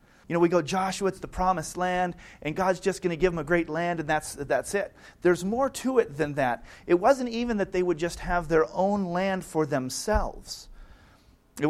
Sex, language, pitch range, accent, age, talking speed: male, English, 160-205 Hz, American, 40-59, 220 wpm